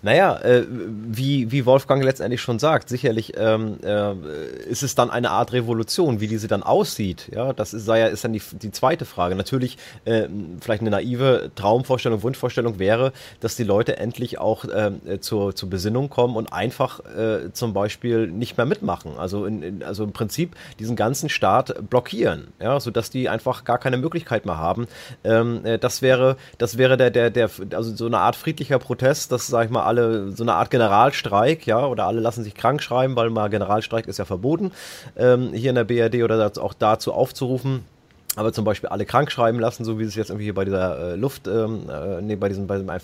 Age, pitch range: 30-49, 105-130 Hz